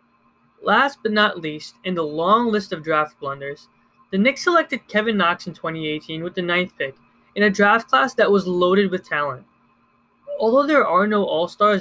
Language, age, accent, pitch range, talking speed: English, 20-39, American, 170-225 Hz, 185 wpm